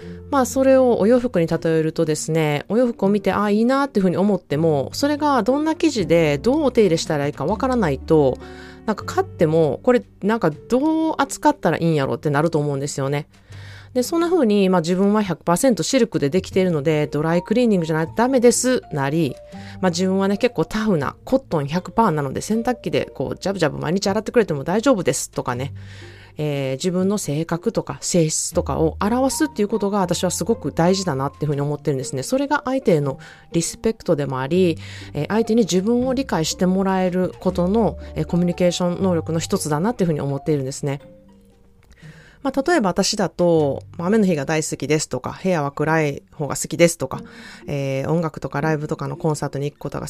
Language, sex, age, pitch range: Japanese, female, 20-39, 150-220 Hz